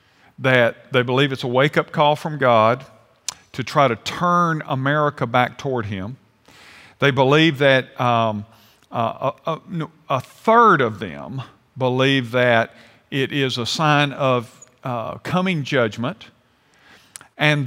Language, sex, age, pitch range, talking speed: English, male, 50-69, 120-150 Hz, 130 wpm